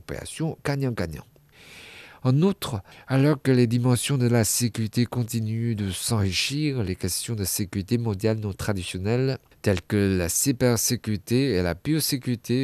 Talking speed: 135 wpm